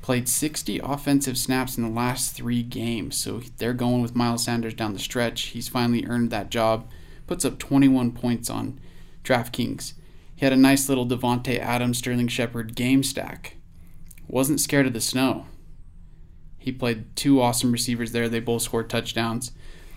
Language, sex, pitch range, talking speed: English, male, 115-130 Hz, 165 wpm